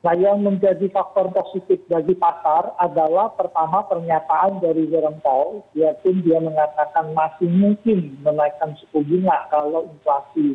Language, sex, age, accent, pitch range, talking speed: Indonesian, male, 40-59, native, 160-195 Hz, 130 wpm